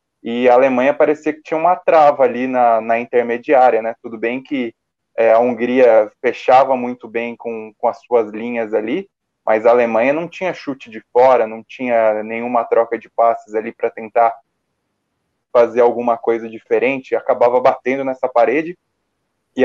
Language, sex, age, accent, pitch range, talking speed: Portuguese, male, 20-39, Brazilian, 120-155 Hz, 160 wpm